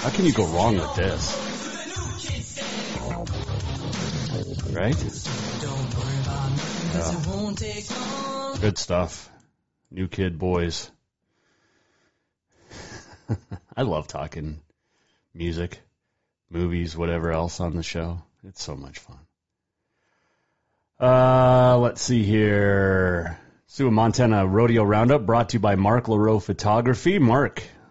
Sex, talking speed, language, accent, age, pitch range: male, 95 wpm, English, American, 30-49, 95-120 Hz